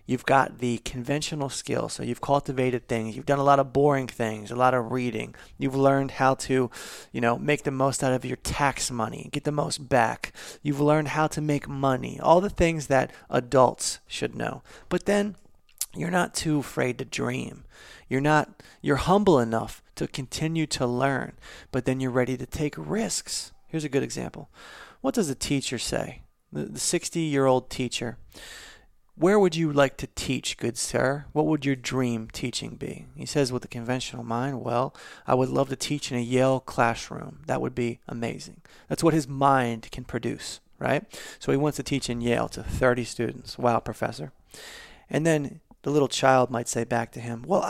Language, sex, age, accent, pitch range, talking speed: English, male, 30-49, American, 125-150 Hz, 190 wpm